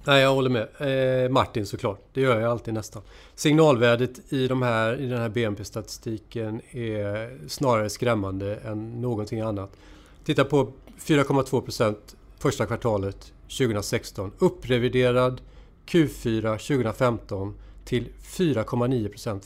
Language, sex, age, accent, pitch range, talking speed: Swedish, male, 40-59, native, 110-145 Hz, 120 wpm